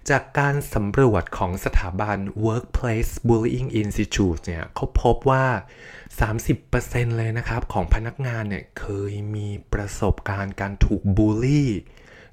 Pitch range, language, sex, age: 95-125 Hz, Thai, male, 20-39